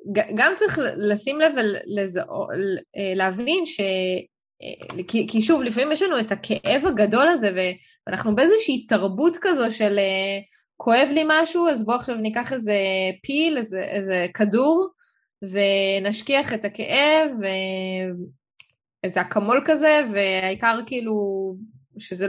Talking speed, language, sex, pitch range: 110 wpm, Hebrew, female, 195-275 Hz